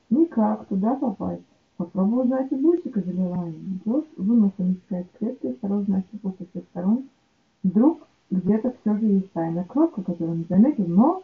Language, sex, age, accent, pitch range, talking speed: Russian, female, 30-49, native, 190-235 Hz, 165 wpm